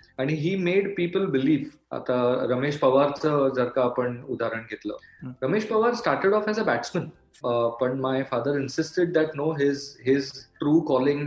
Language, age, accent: Marathi, 20-39, native